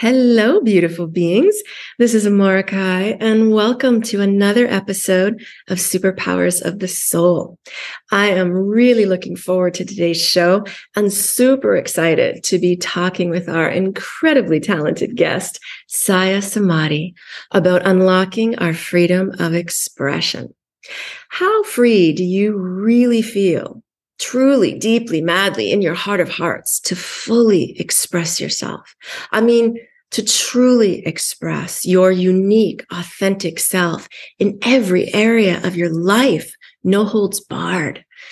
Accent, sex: American, female